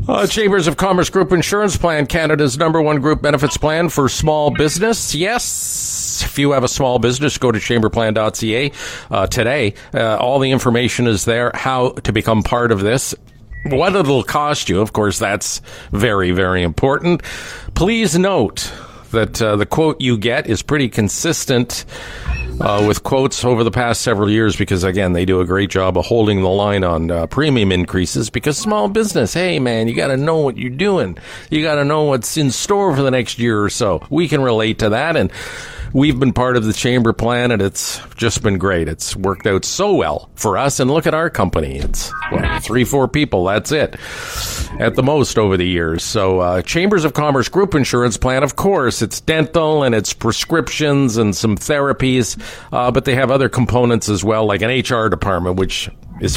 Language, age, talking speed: English, 50-69, 195 wpm